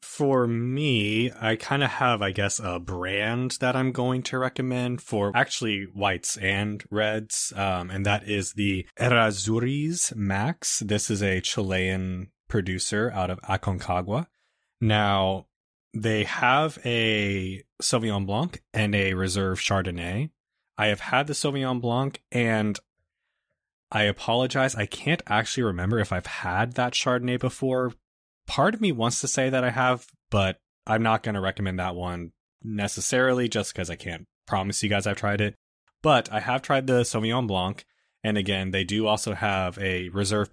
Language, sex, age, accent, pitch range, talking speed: English, male, 20-39, American, 95-120 Hz, 160 wpm